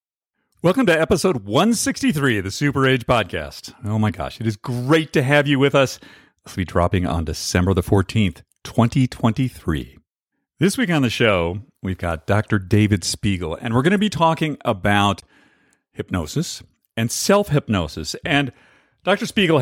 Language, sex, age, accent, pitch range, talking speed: English, male, 50-69, American, 100-145 Hz, 160 wpm